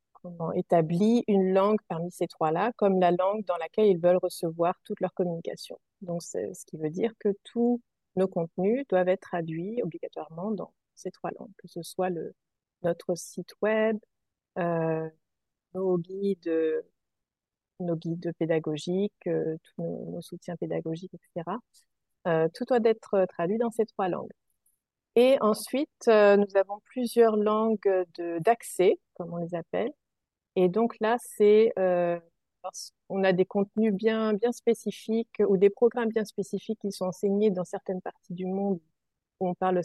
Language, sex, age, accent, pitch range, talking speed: French, female, 30-49, French, 170-215 Hz, 160 wpm